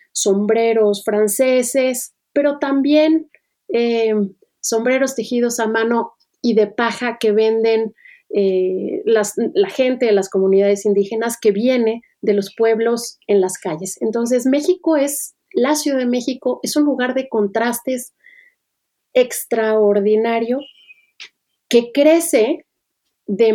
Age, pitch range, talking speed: 30-49, 205-255 Hz, 115 wpm